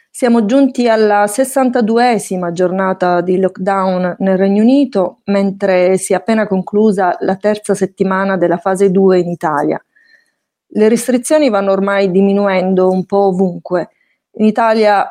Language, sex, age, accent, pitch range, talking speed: Italian, female, 30-49, native, 185-215 Hz, 130 wpm